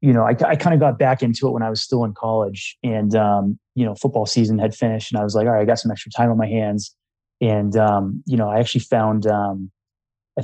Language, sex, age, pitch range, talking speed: English, male, 20-39, 105-125 Hz, 265 wpm